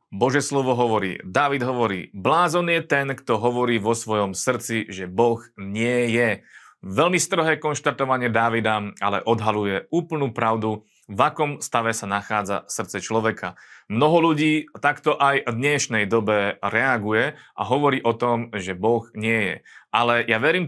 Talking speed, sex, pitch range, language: 150 wpm, male, 110-140 Hz, Slovak